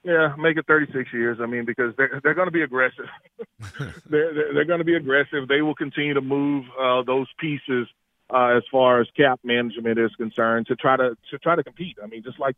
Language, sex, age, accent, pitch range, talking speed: English, male, 40-59, American, 120-140 Hz, 225 wpm